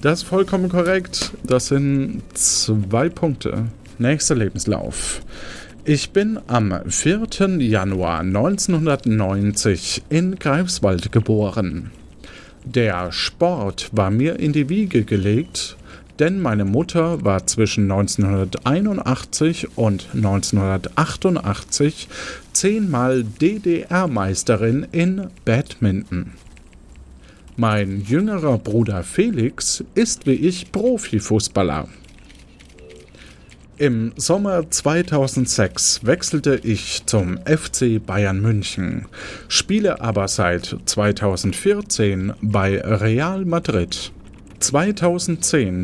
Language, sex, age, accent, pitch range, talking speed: German, male, 50-69, German, 100-165 Hz, 85 wpm